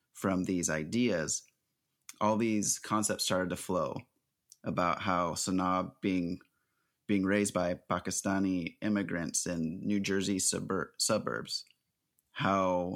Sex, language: male, English